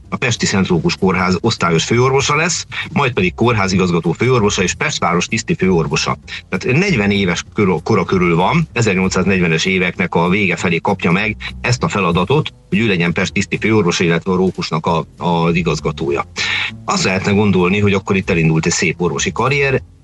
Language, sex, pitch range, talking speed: Hungarian, male, 90-110 Hz, 160 wpm